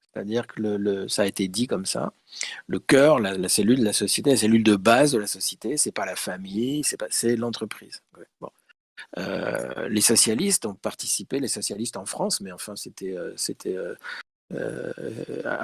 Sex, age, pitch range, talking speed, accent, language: male, 50-69, 105-140 Hz, 195 wpm, French, French